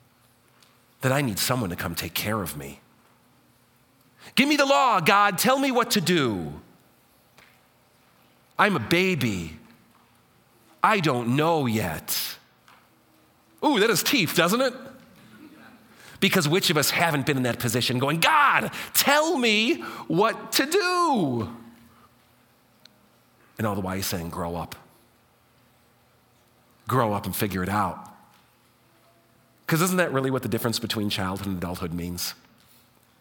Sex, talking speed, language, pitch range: male, 130 wpm, English, 110-130 Hz